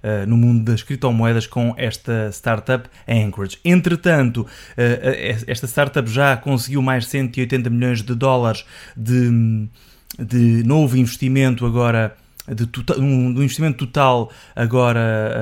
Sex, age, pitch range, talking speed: male, 20-39, 115-135 Hz, 110 wpm